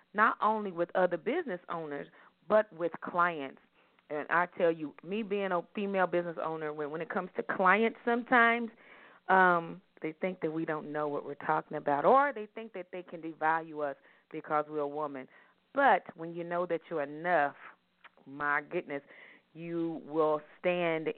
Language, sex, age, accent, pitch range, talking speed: English, female, 40-59, American, 160-215 Hz, 170 wpm